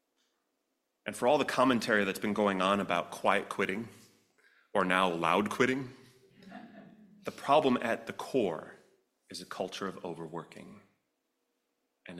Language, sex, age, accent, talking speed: English, male, 30-49, American, 135 wpm